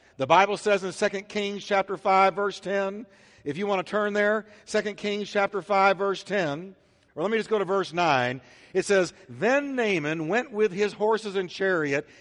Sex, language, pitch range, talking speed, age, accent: male, English, 170-220 Hz, 195 wpm, 60-79, American